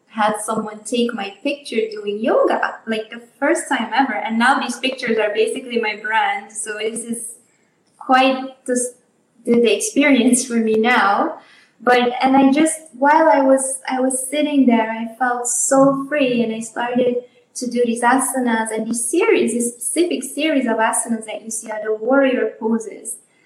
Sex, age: female, 20-39